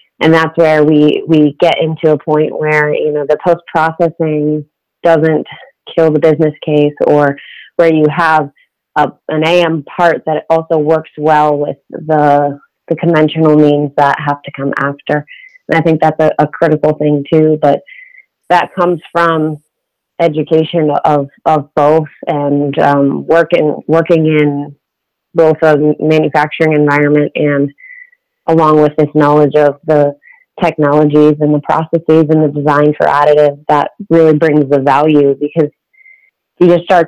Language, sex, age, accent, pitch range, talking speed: English, female, 30-49, American, 145-165 Hz, 150 wpm